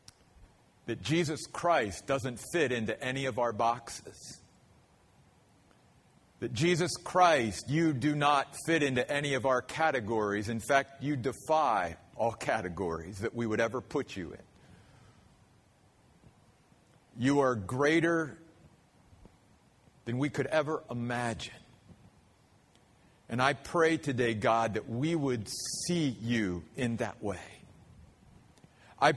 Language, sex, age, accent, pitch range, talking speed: English, male, 50-69, American, 110-150 Hz, 115 wpm